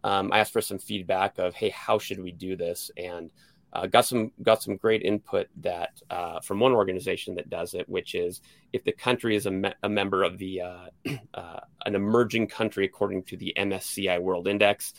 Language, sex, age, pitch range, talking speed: English, male, 30-49, 95-110 Hz, 210 wpm